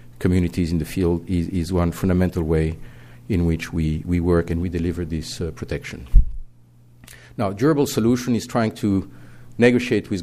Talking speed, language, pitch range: 165 wpm, English, 85-105 Hz